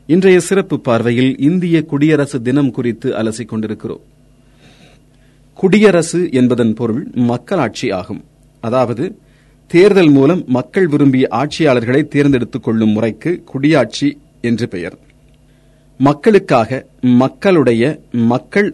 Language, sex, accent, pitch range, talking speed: Tamil, male, native, 120-155 Hz, 95 wpm